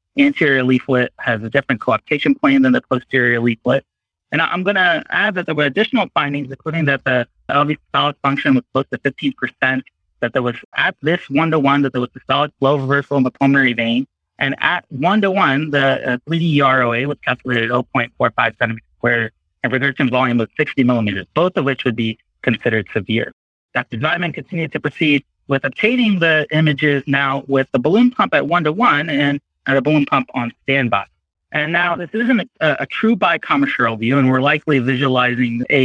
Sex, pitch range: male, 125-155 Hz